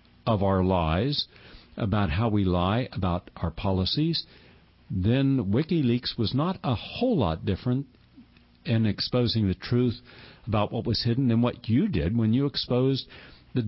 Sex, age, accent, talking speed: male, 60-79, American, 150 wpm